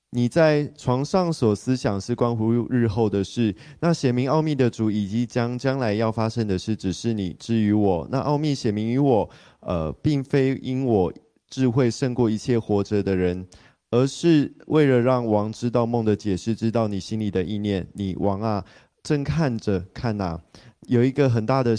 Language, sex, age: Chinese, male, 20-39